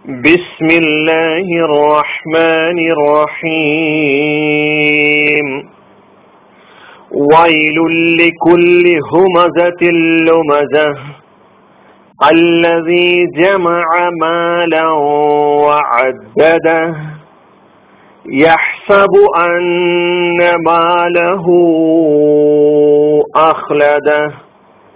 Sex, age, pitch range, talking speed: male, 40-59, 150-175 Hz, 40 wpm